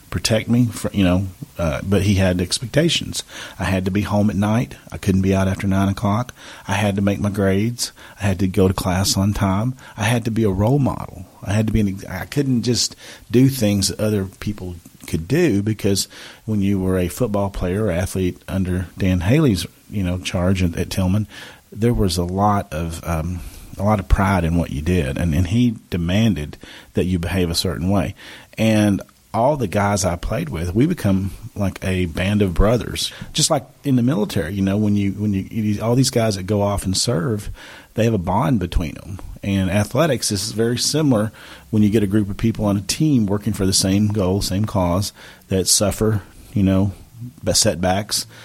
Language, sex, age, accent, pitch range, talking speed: English, male, 40-59, American, 95-110 Hz, 205 wpm